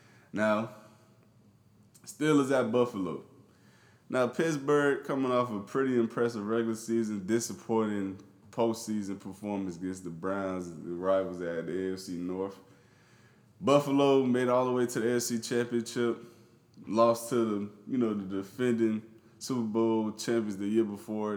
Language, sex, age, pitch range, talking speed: English, male, 20-39, 95-115 Hz, 130 wpm